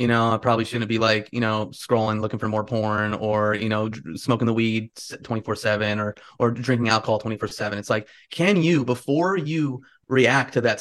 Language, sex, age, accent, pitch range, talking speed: English, male, 20-39, American, 115-135 Hz, 205 wpm